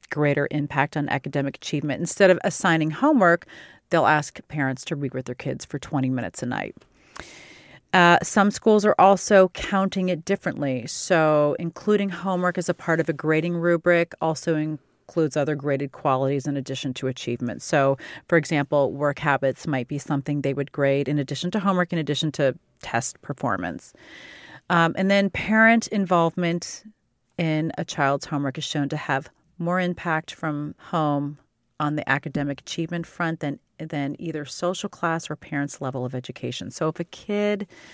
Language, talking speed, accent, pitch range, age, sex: English, 165 wpm, American, 140-175 Hz, 40-59, female